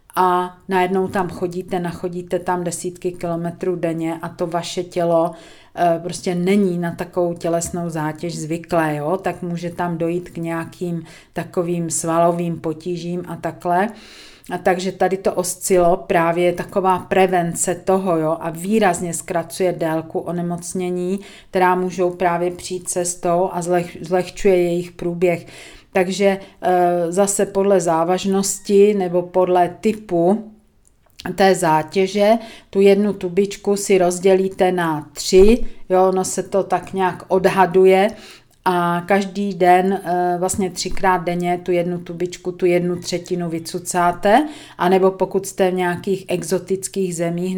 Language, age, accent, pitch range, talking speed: Czech, 40-59, native, 170-190 Hz, 125 wpm